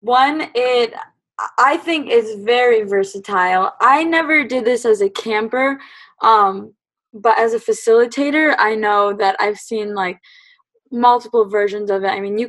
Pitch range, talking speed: 205-270 Hz, 155 wpm